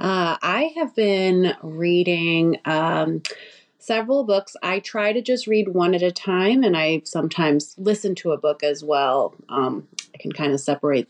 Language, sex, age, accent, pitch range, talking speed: English, female, 30-49, American, 155-185 Hz, 175 wpm